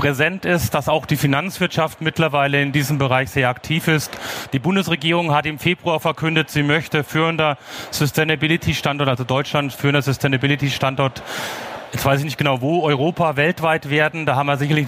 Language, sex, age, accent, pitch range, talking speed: German, male, 30-49, German, 140-165 Hz, 160 wpm